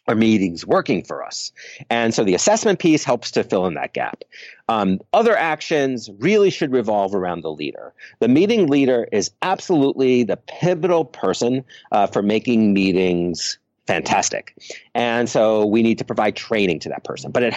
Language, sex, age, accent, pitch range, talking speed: English, male, 40-59, American, 115-195 Hz, 170 wpm